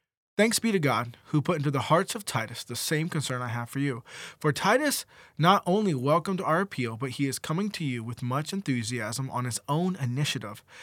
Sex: male